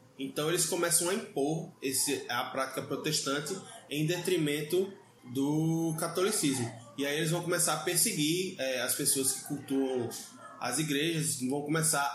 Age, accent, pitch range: 20-39, Brazilian, 140-175 Hz